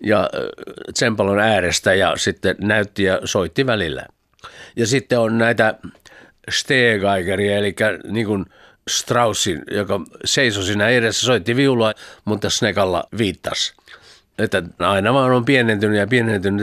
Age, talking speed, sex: 60-79, 125 wpm, male